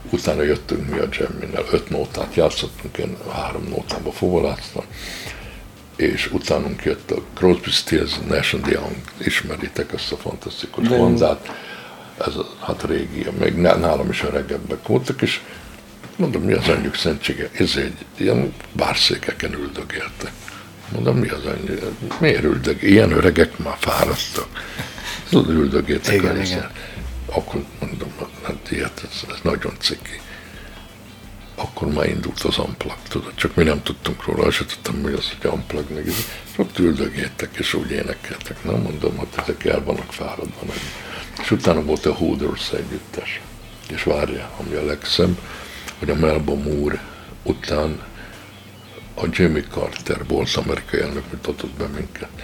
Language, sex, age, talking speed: Hungarian, male, 60-79, 140 wpm